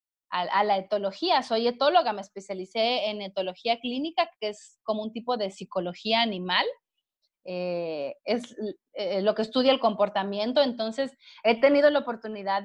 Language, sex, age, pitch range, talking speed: Spanish, female, 30-49, 220-285 Hz, 145 wpm